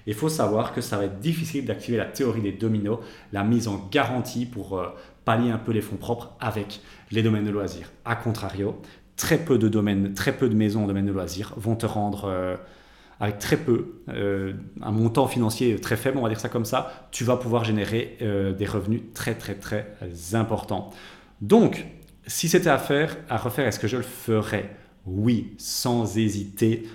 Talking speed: 195 wpm